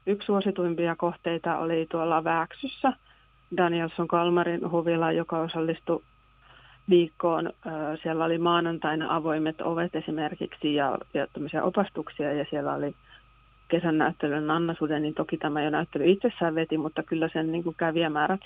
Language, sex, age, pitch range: Finnish, female, 30-49, 155-170 Hz